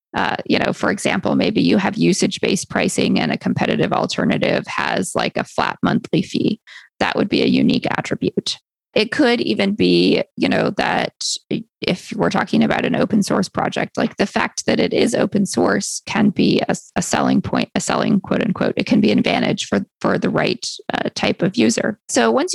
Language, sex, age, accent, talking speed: English, female, 20-39, American, 190 wpm